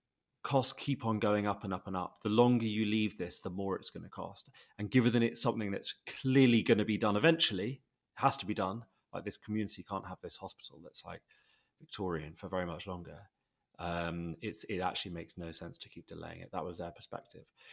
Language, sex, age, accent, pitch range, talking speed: English, male, 30-49, British, 95-120 Hz, 225 wpm